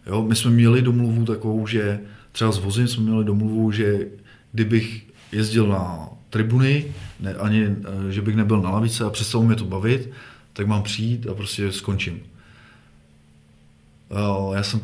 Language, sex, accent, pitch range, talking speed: Czech, male, native, 100-115 Hz, 155 wpm